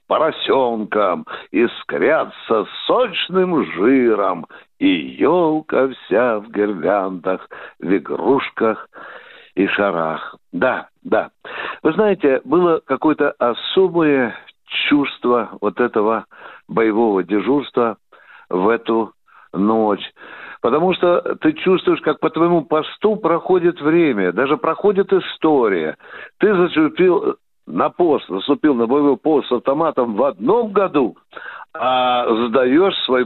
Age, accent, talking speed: 60-79, native, 105 wpm